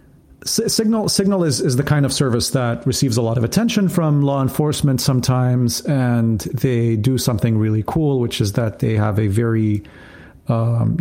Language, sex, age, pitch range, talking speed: English, male, 40-59, 120-145 Hz, 175 wpm